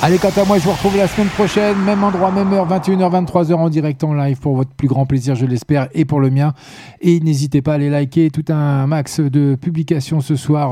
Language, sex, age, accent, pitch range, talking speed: French, male, 40-59, French, 130-175 Hz, 240 wpm